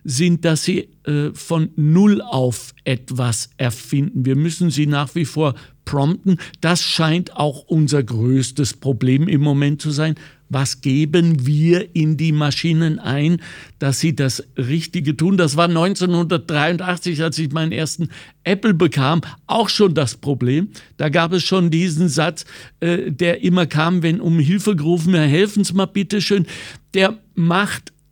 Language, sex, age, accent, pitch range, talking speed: German, male, 60-79, German, 140-180 Hz, 160 wpm